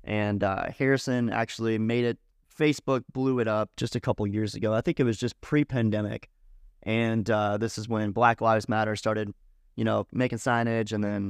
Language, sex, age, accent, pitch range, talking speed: English, male, 30-49, American, 105-120 Hz, 195 wpm